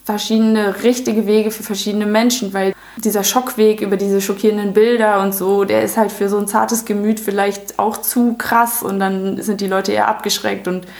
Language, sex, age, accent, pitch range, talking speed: German, female, 20-39, German, 185-215 Hz, 190 wpm